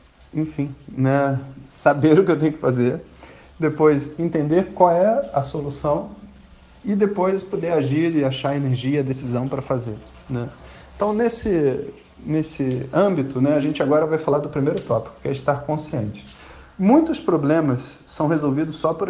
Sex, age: male, 40-59